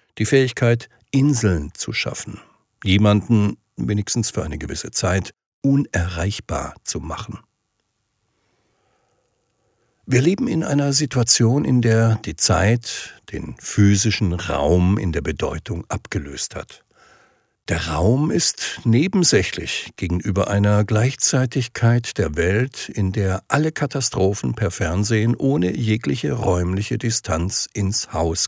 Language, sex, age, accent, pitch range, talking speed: German, male, 60-79, German, 95-120 Hz, 110 wpm